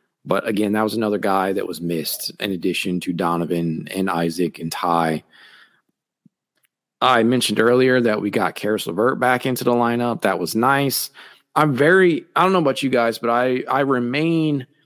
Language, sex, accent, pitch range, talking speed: English, male, American, 100-130 Hz, 180 wpm